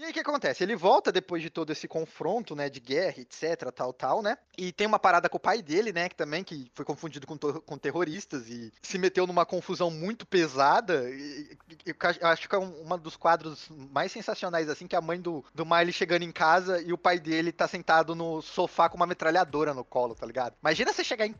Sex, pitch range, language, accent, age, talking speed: male, 150-200 Hz, Portuguese, Brazilian, 20-39, 240 wpm